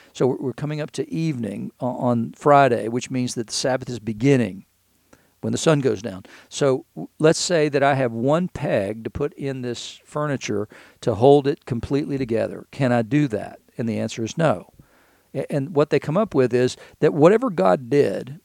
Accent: American